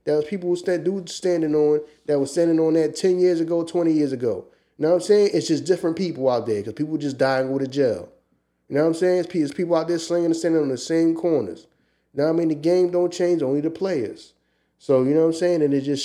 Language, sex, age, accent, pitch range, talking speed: English, male, 20-39, American, 130-160 Hz, 275 wpm